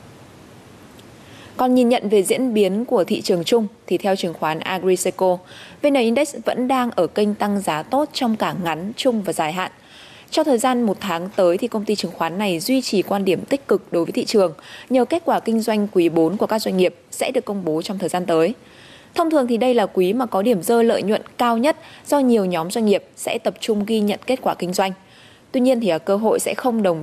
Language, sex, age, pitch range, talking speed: Vietnamese, female, 20-39, 180-240 Hz, 240 wpm